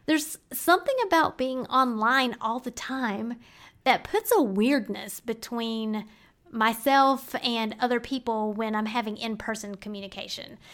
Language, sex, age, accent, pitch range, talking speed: English, female, 30-49, American, 235-315 Hz, 125 wpm